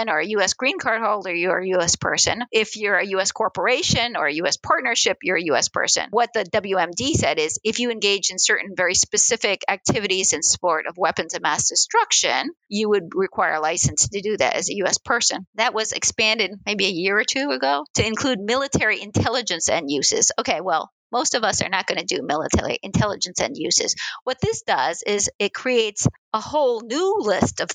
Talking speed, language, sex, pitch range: 205 wpm, English, female, 185-240 Hz